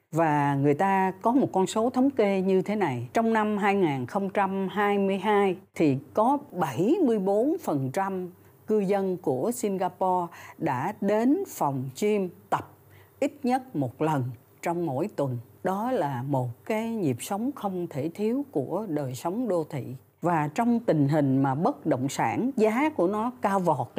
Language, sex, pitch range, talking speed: Vietnamese, female, 145-215 Hz, 155 wpm